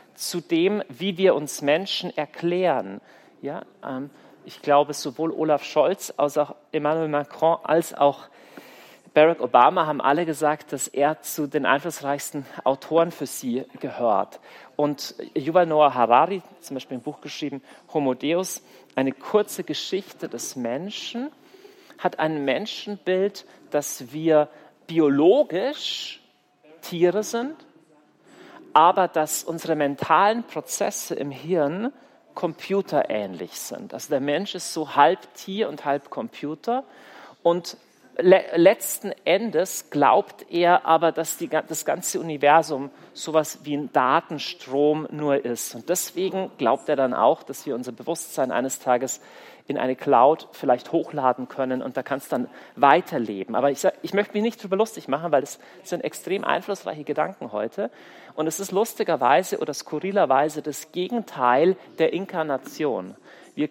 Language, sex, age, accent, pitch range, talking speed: German, male, 40-59, German, 145-185 Hz, 140 wpm